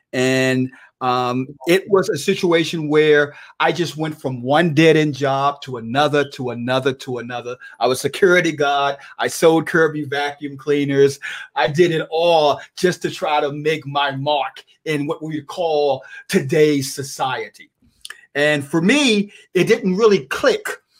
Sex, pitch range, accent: male, 140-195 Hz, American